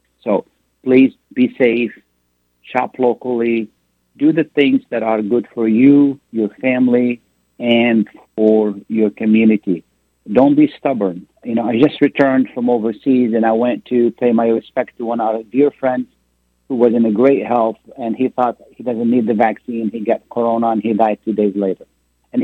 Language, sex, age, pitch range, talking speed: Arabic, male, 50-69, 105-125 Hz, 180 wpm